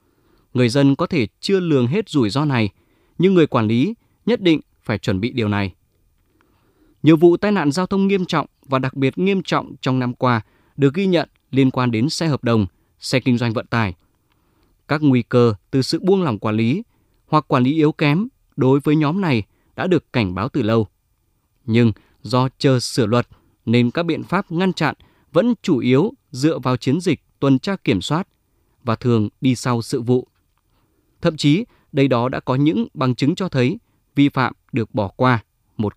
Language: Vietnamese